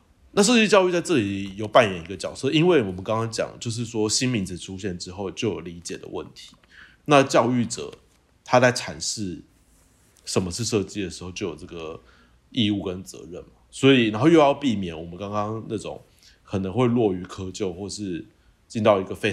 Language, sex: Chinese, male